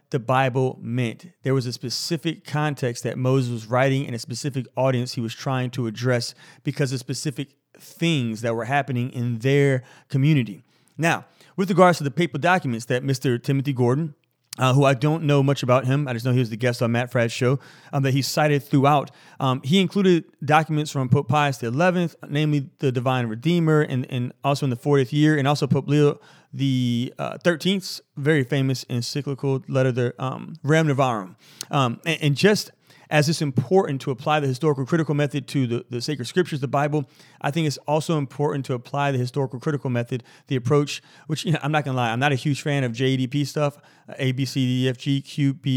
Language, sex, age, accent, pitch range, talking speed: English, male, 30-49, American, 130-150 Hz, 195 wpm